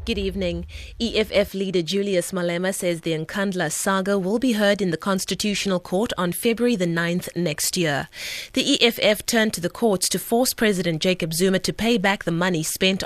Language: English